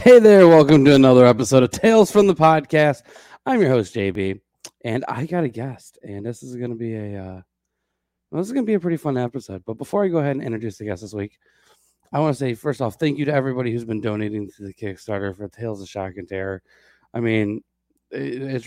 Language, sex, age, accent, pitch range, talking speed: English, male, 20-39, American, 105-130 Hz, 240 wpm